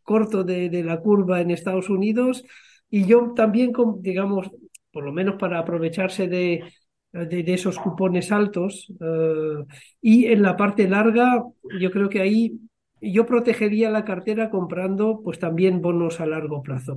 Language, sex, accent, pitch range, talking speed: Spanish, male, Spanish, 170-215 Hz, 160 wpm